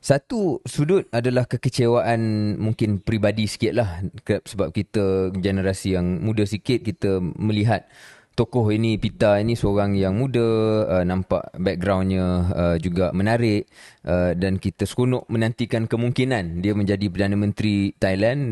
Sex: male